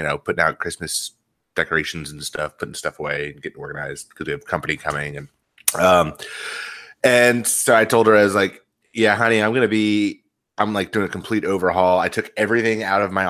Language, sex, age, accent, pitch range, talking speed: English, male, 30-49, American, 85-100 Hz, 210 wpm